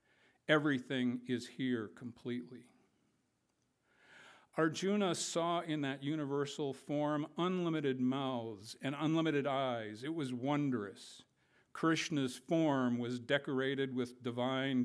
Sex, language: male, English